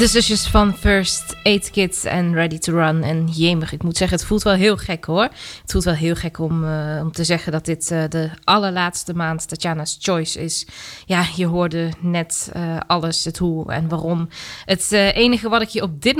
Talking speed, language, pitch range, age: 215 wpm, Dutch, 160-200 Hz, 20-39